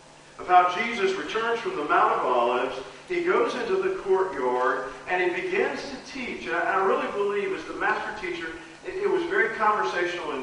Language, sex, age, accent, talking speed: English, male, 50-69, American, 185 wpm